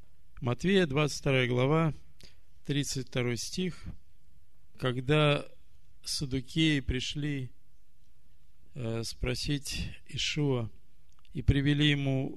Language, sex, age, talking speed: Russian, male, 50-69, 65 wpm